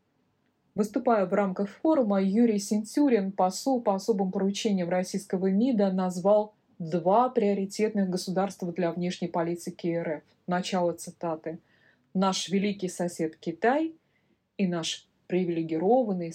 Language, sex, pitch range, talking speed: Russian, female, 175-210 Hz, 105 wpm